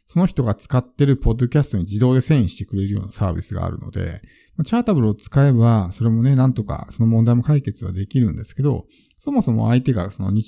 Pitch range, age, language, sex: 105-155 Hz, 50-69, Japanese, male